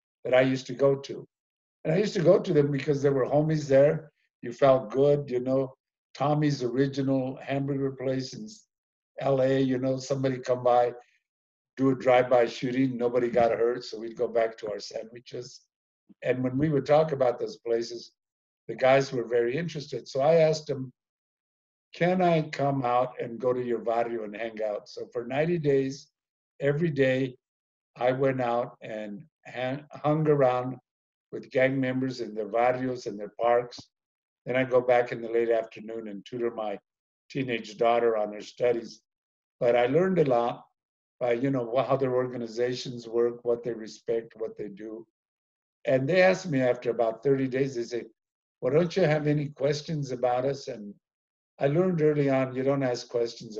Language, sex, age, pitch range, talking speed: English, male, 60-79, 120-140 Hz, 180 wpm